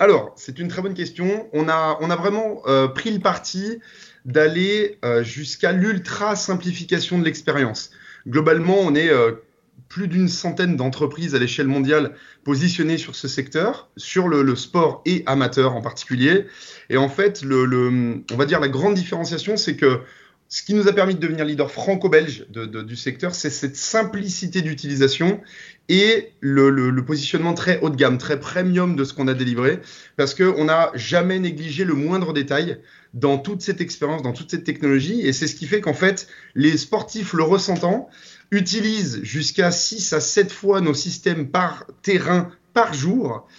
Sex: male